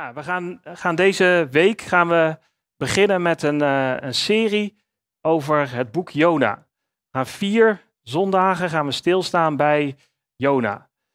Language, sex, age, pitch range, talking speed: Dutch, male, 40-59, 140-185 Hz, 135 wpm